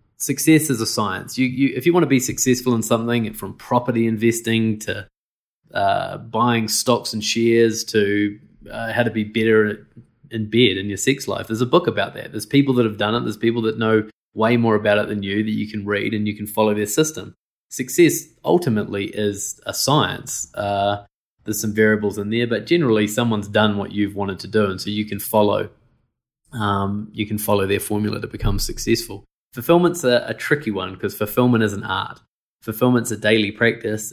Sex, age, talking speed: male, 20-39, 200 wpm